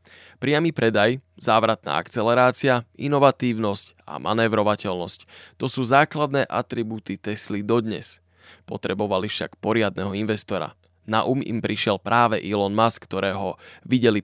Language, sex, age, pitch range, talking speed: Slovak, male, 20-39, 100-125 Hz, 110 wpm